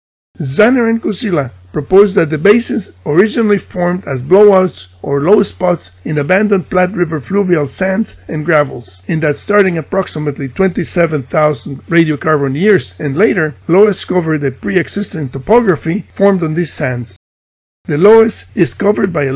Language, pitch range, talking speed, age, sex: English, 145-195 Hz, 145 wpm, 50-69, male